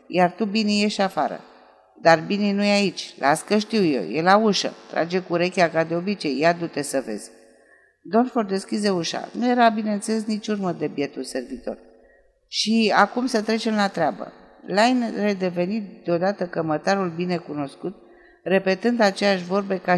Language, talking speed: Romanian, 160 wpm